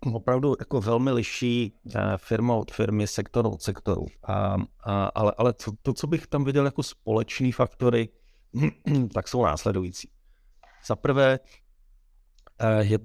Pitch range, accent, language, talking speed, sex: 100-115 Hz, native, Czech, 120 wpm, male